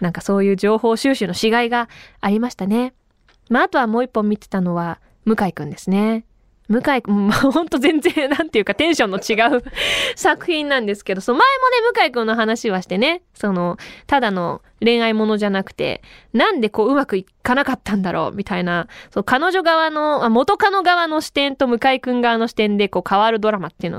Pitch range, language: 205-335 Hz, Japanese